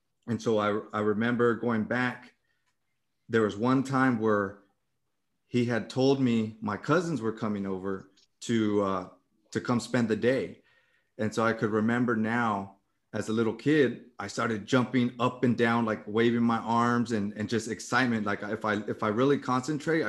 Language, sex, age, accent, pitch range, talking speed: English, male, 30-49, American, 110-125 Hz, 175 wpm